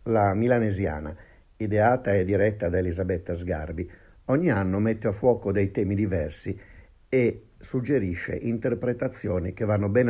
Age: 50-69